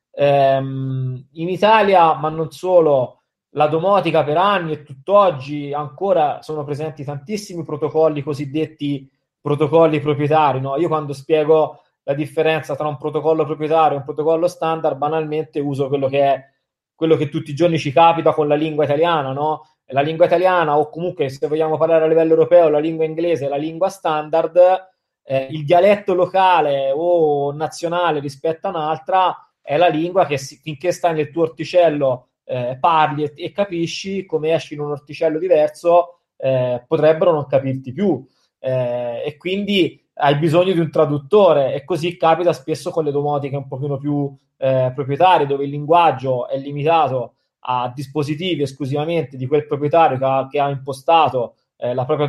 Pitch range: 145-170 Hz